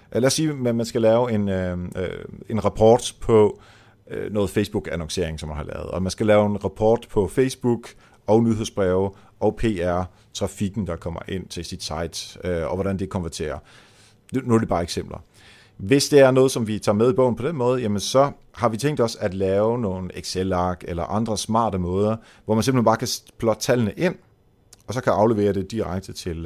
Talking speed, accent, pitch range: 200 wpm, native, 95-115 Hz